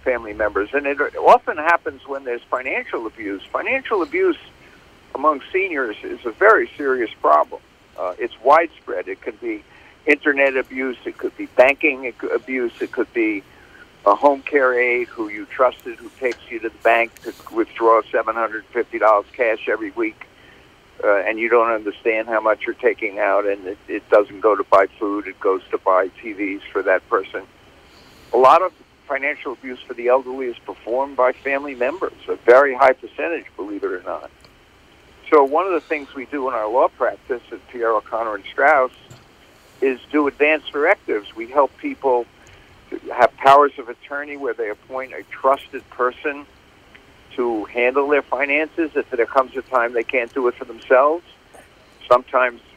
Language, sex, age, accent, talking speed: English, male, 60-79, American, 170 wpm